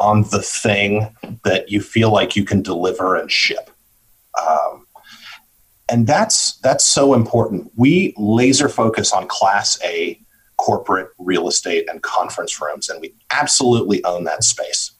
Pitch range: 105-130 Hz